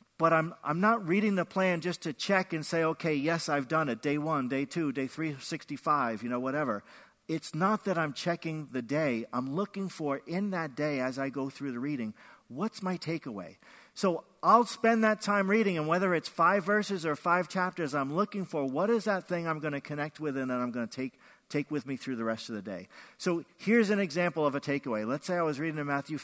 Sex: male